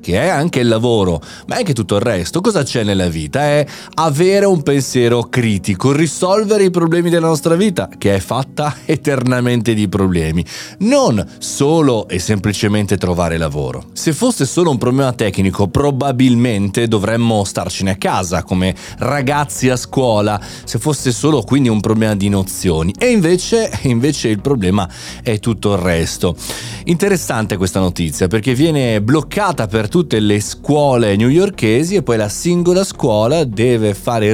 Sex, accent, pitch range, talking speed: male, native, 100-145 Hz, 155 wpm